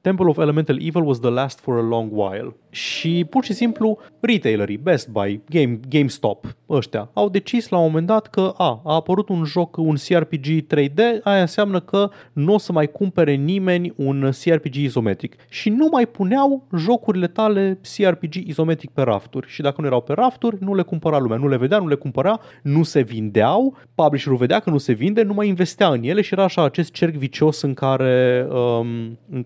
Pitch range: 115-170 Hz